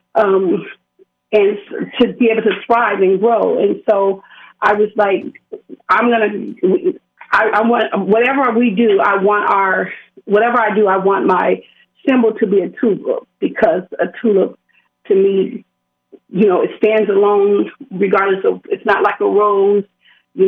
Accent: American